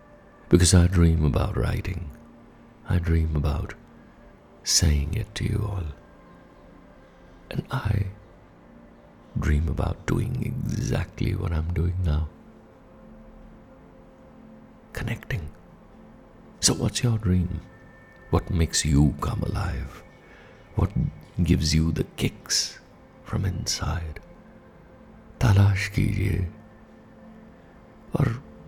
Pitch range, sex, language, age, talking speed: 80-105 Hz, male, Hindi, 60-79, 90 wpm